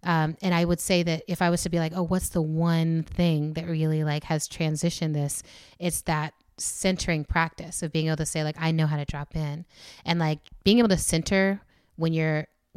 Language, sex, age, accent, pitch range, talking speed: English, female, 30-49, American, 160-185 Hz, 220 wpm